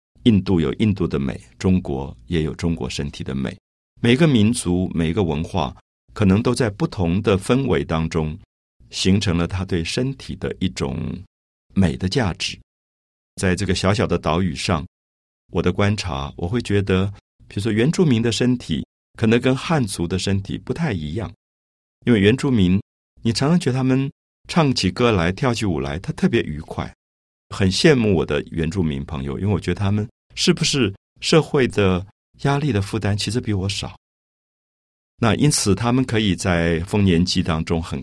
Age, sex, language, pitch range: 50-69, male, Chinese, 80-110 Hz